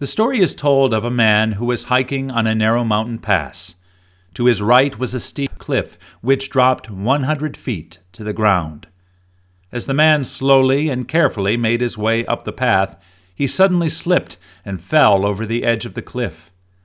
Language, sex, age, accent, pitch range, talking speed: English, male, 50-69, American, 90-130 Hz, 185 wpm